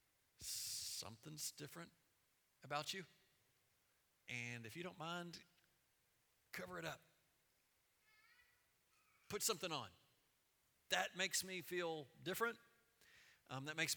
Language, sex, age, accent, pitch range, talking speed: English, male, 40-59, American, 140-205 Hz, 100 wpm